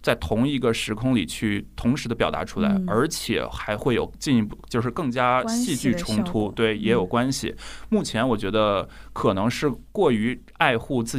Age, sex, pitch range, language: 20-39, male, 110-135 Hz, Chinese